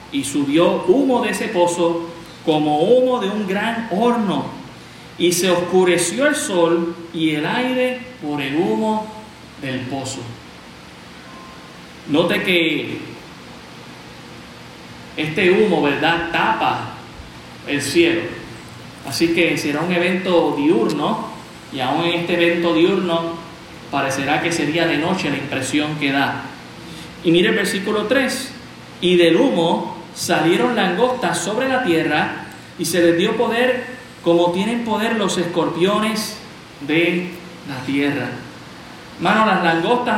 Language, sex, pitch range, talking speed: Spanish, male, 155-190 Hz, 125 wpm